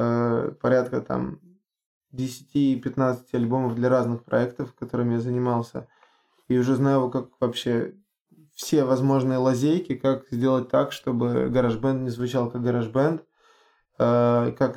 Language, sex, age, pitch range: Russian, male, 20-39, 125-140 Hz